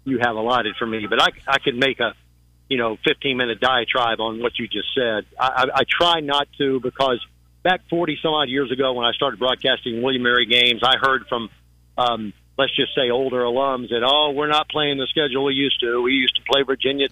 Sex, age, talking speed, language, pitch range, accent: male, 50-69, 220 wpm, English, 115-140 Hz, American